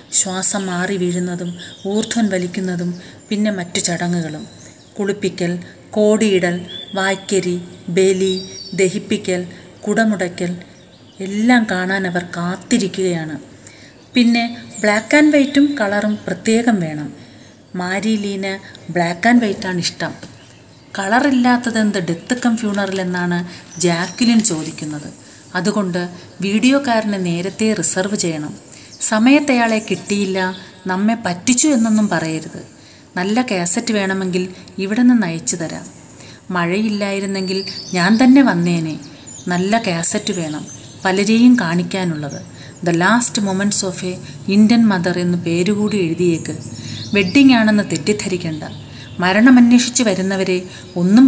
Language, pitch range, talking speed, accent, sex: Malayalam, 175-215 Hz, 90 wpm, native, female